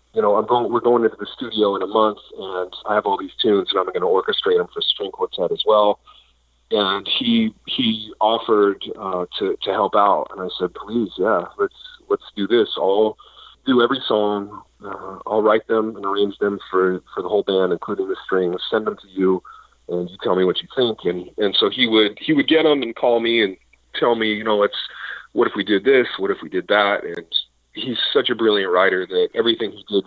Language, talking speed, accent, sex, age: English, 230 wpm, American, male, 40-59